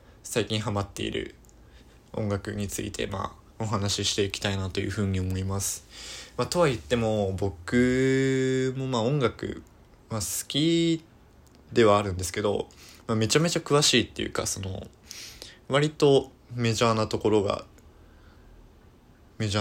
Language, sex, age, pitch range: Japanese, male, 20-39, 95-120 Hz